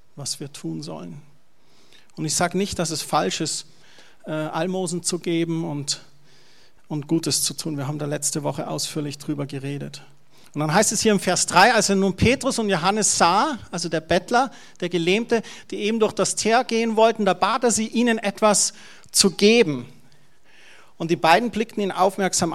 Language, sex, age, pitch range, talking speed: German, male, 40-59, 165-215 Hz, 185 wpm